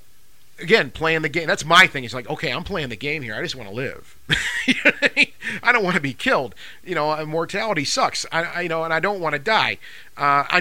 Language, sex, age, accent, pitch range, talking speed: English, male, 40-59, American, 115-150 Hz, 245 wpm